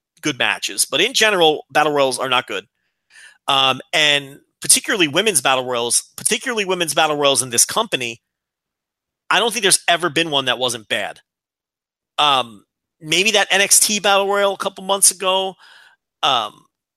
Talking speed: 155 wpm